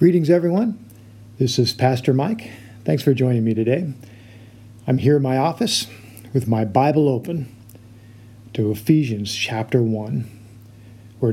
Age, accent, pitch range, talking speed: 50-69, American, 110-130 Hz, 130 wpm